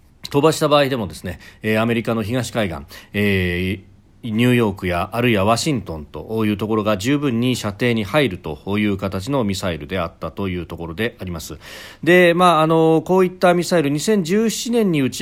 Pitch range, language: 95-140 Hz, Japanese